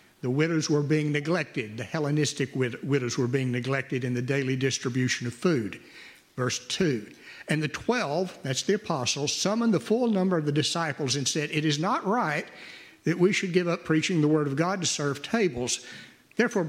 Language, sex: English, male